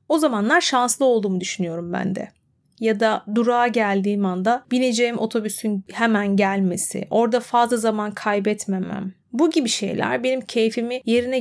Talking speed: 135 wpm